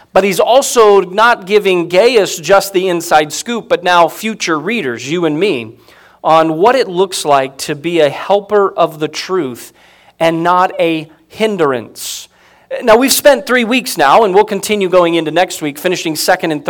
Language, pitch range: English, 140-195 Hz